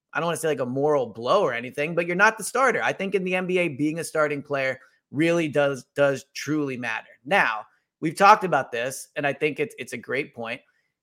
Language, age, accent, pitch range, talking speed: English, 30-49, American, 140-180 Hz, 235 wpm